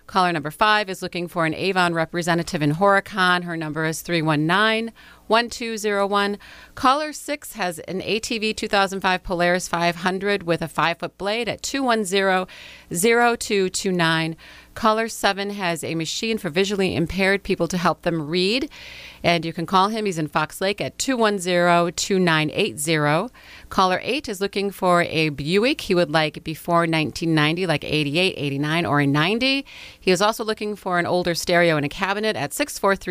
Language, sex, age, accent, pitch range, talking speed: English, female, 30-49, American, 165-210 Hz, 150 wpm